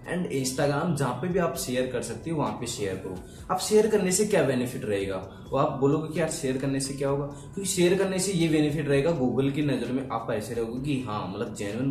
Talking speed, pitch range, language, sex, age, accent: 245 wpm, 125-155 Hz, Hindi, male, 20-39, native